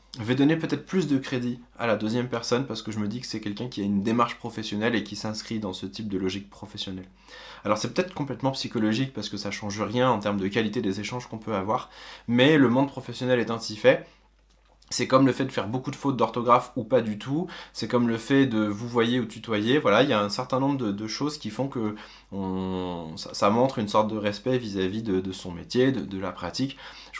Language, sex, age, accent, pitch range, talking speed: French, male, 20-39, French, 100-125 Hz, 245 wpm